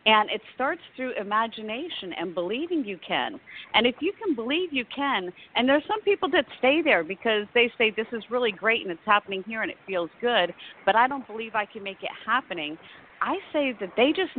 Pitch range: 220-290 Hz